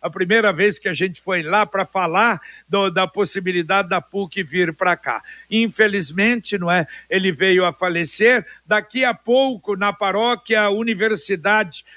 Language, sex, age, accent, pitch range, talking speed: Portuguese, male, 60-79, Brazilian, 185-225 Hz, 150 wpm